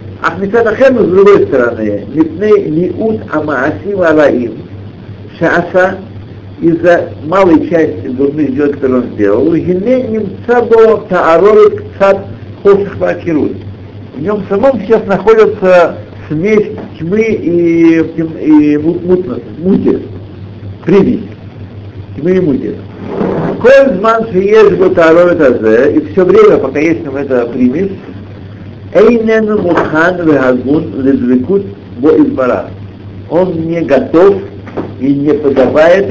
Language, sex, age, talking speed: Russian, male, 60-79, 90 wpm